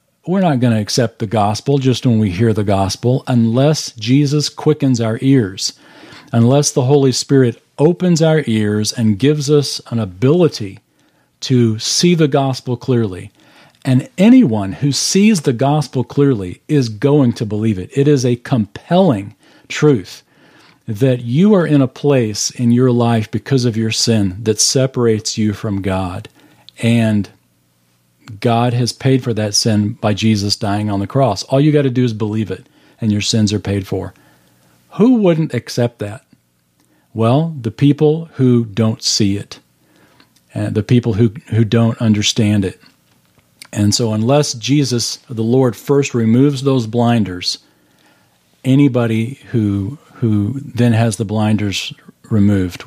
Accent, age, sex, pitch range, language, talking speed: American, 40-59, male, 105-135 Hz, English, 150 wpm